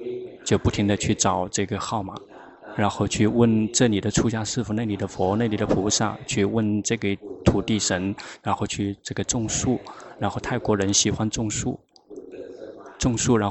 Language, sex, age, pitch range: Chinese, male, 20-39, 100-115 Hz